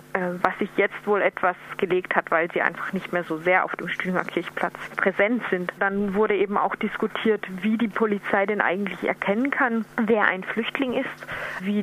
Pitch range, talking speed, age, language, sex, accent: 190-225 Hz, 185 wpm, 20-39, German, female, German